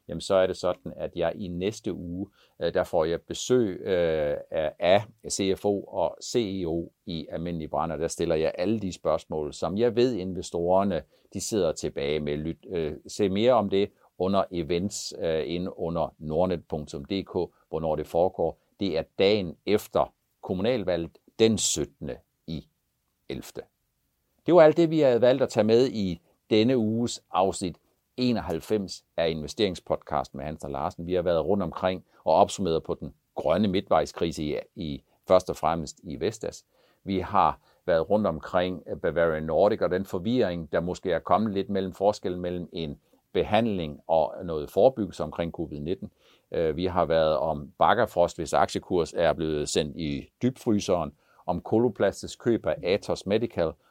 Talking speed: 155 wpm